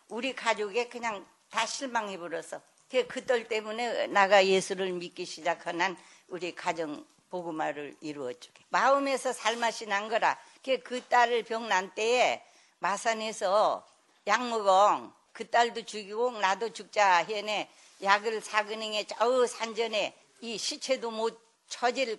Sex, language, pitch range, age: female, Korean, 180-230 Hz, 60-79